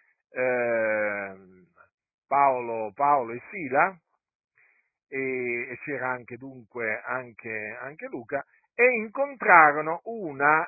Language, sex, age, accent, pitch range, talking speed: Italian, male, 50-69, native, 120-175 Hz, 85 wpm